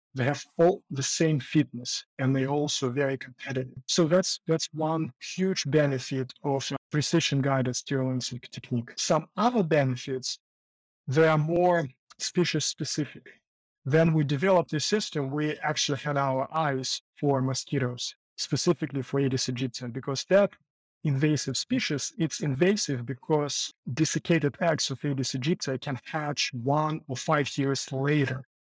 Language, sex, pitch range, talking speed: English, male, 130-160 Hz, 135 wpm